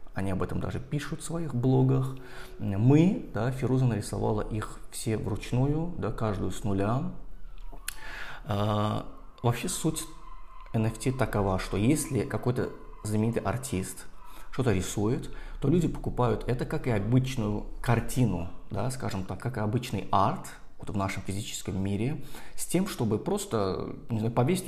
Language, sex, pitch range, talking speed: Russian, male, 95-120 Hz, 140 wpm